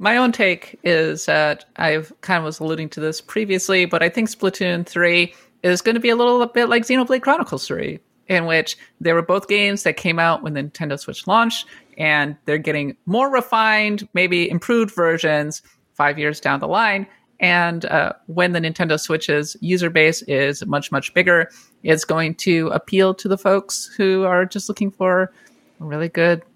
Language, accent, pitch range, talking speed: English, American, 155-200 Hz, 190 wpm